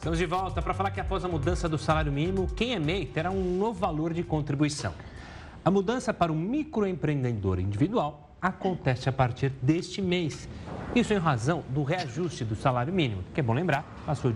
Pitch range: 125-175 Hz